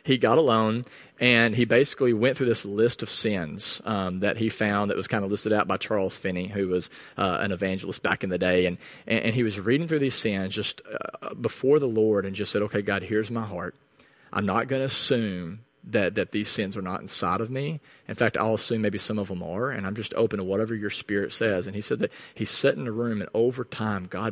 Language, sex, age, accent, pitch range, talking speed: English, male, 40-59, American, 100-120 Hz, 245 wpm